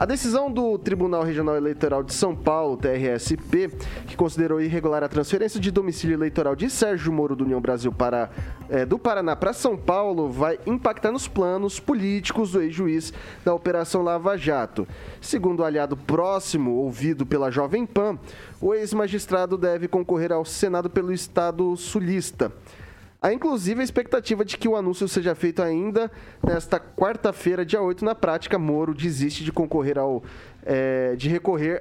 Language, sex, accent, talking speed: Portuguese, male, Brazilian, 150 wpm